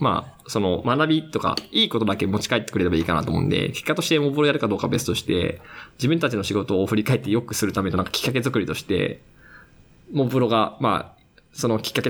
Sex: male